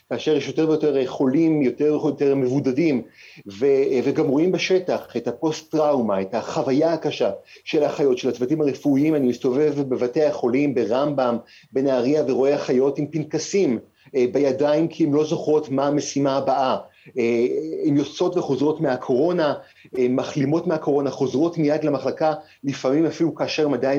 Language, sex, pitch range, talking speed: Hebrew, male, 125-155 Hz, 135 wpm